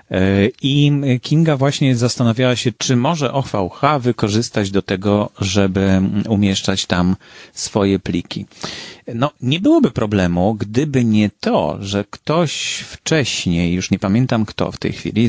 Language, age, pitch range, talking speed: English, 40-59, 95-120 Hz, 130 wpm